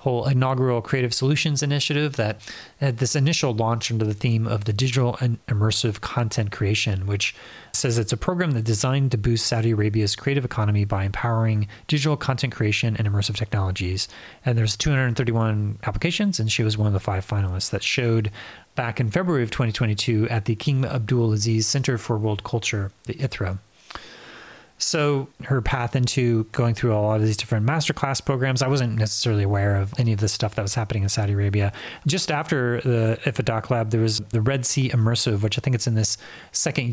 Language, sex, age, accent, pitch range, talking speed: English, male, 30-49, American, 110-130 Hz, 190 wpm